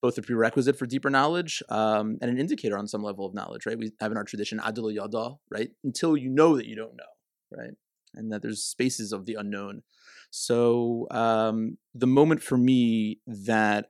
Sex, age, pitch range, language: male, 30-49, 100-115 Hz, English